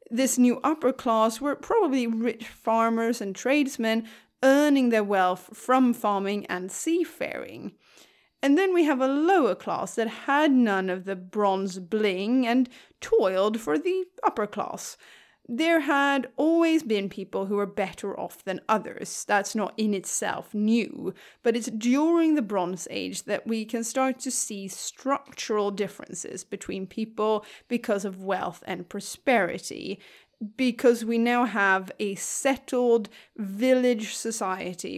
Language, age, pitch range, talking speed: English, 30-49, 205-275 Hz, 140 wpm